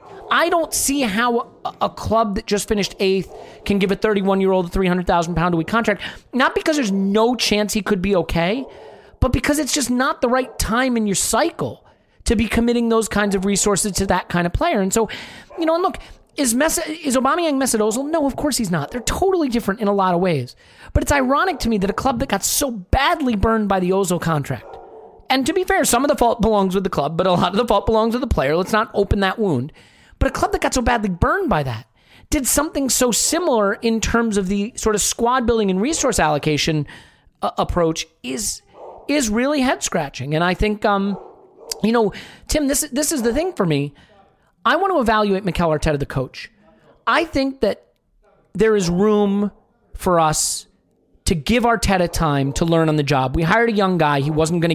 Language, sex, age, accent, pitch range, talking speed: English, male, 30-49, American, 175-250 Hz, 215 wpm